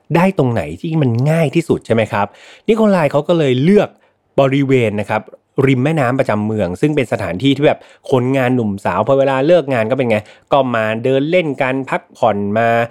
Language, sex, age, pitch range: Thai, male, 30-49, 105-140 Hz